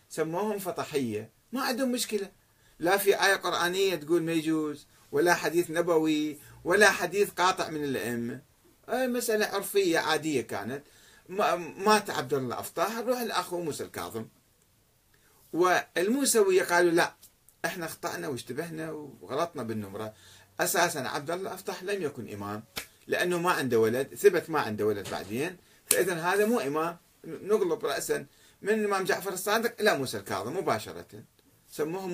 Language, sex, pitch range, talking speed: Arabic, male, 130-195 Hz, 130 wpm